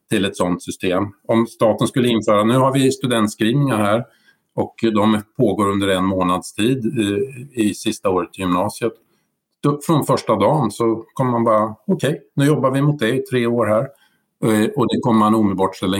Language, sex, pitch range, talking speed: Swedish, male, 100-130 Hz, 190 wpm